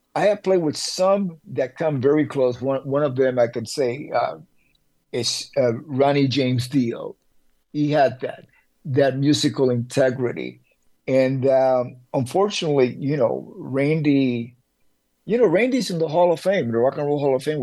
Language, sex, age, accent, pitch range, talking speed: English, male, 50-69, American, 120-145 Hz, 165 wpm